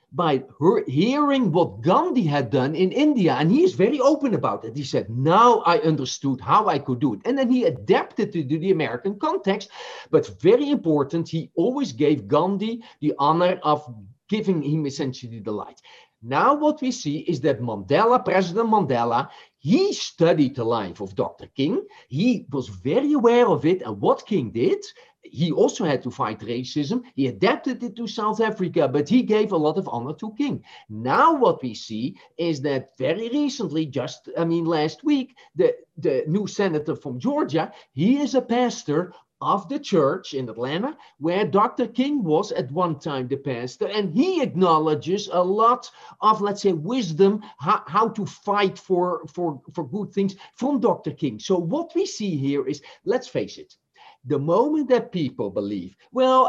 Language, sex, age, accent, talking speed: English, male, 40-59, Dutch, 180 wpm